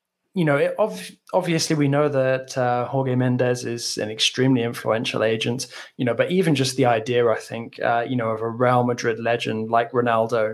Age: 20-39